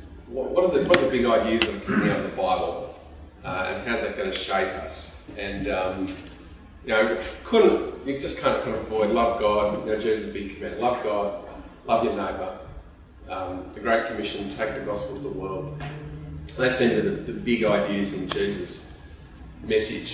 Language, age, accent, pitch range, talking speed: English, 30-49, Australian, 100-130 Hz, 205 wpm